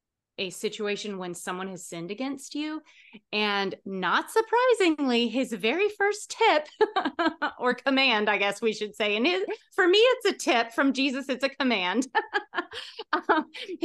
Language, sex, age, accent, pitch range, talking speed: English, female, 30-49, American, 200-290 Hz, 145 wpm